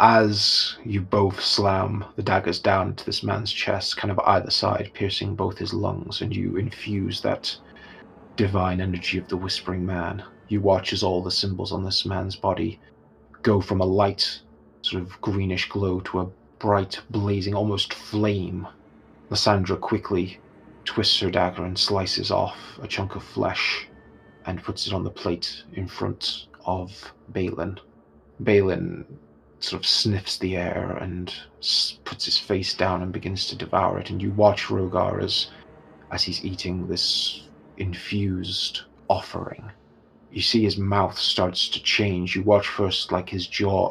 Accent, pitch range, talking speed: British, 90-100 Hz, 155 wpm